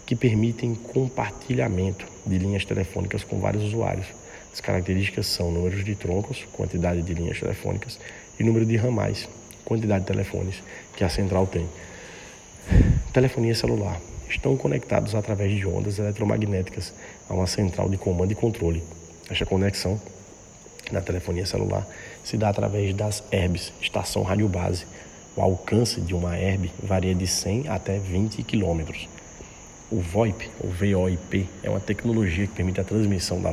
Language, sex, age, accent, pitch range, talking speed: Portuguese, male, 40-59, Brazilian, 90-105 Hz, 145 wpm